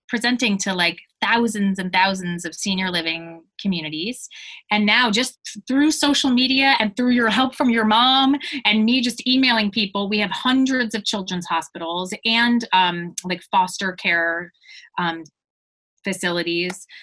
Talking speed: 145 wpm